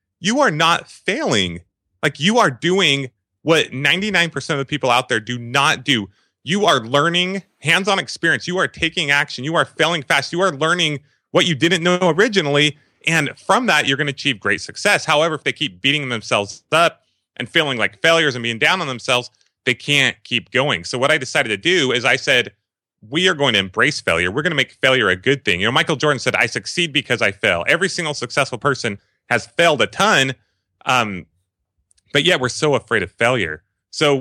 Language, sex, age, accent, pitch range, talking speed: English, male, 30-49, American, 110-155 Hz, 210 wpm